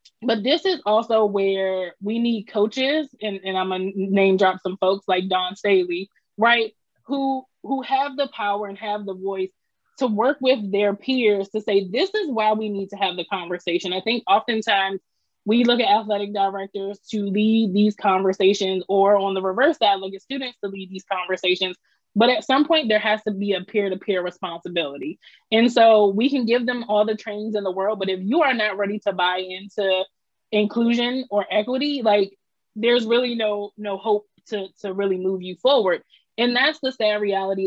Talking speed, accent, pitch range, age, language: 195 wpm, American, 195-230 Hz, 20-39, English